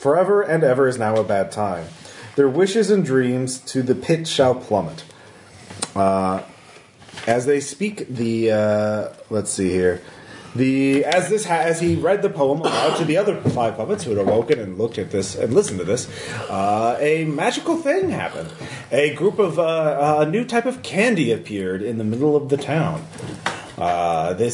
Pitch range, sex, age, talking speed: 105-165 Hz, male, 30-49, 185 wpm